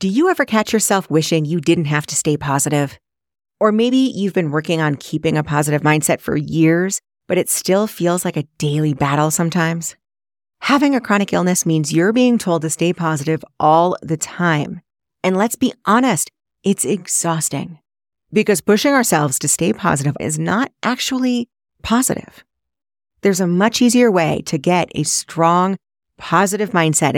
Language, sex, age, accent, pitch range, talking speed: English, female, 30-49, American, 155-200 Hz, 165 wpm